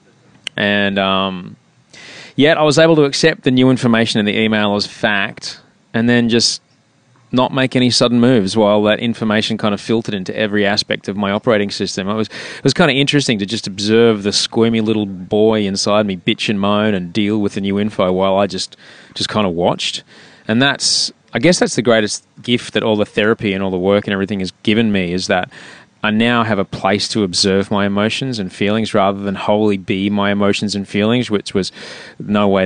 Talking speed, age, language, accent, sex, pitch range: 210 wpm, 20-39, English, Australian, male, 100-120 Hz